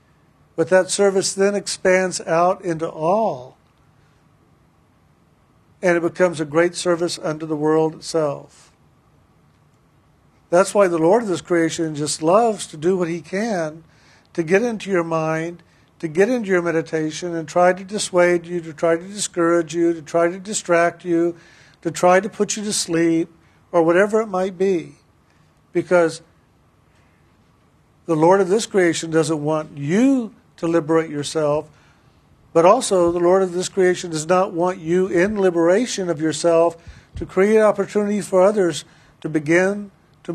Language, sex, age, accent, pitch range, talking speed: English, male, 50-69, American, 165-190 Hz, 155 wpm